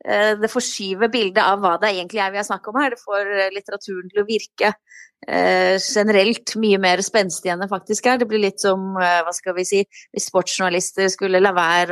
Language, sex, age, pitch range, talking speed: English, female, 20-39, 170-205 Hz, 180 wpm